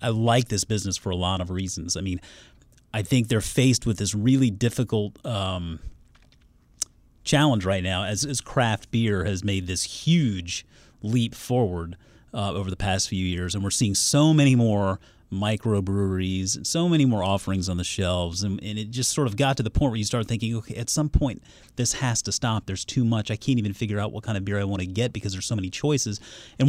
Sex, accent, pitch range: male, American, 95-120 Hz